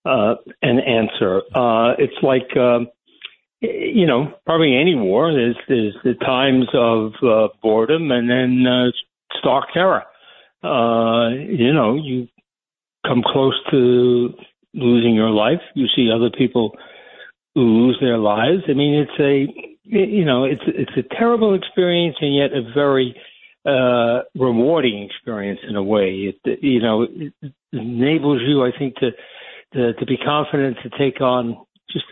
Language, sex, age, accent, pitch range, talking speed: English, male, 60-79, American, 120-150 Hz, 140 wpm